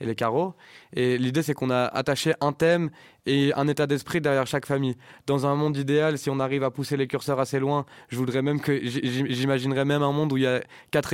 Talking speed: 235 wpm